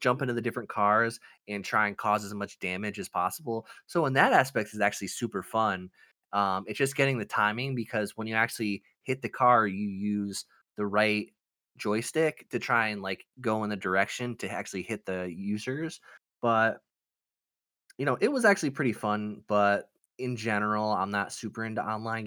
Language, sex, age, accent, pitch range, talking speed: English, male, 20-39, American, 95-115 Hz, 185 wpm